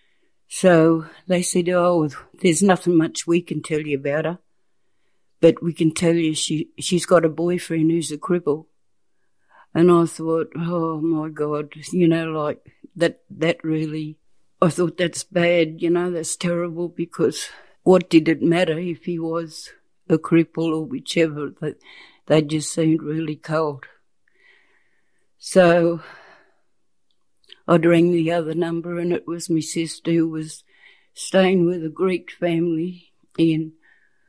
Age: 60-79